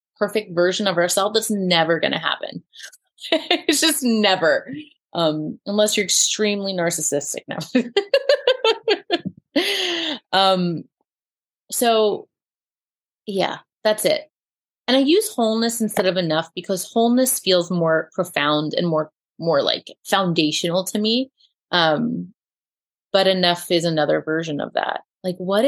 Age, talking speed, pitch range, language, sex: 30-49, 120 wpm, 175-220 Hz, English, female